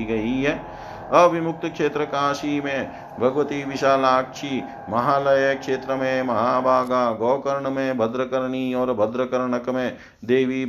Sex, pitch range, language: male, 120-140 Hz, Hindi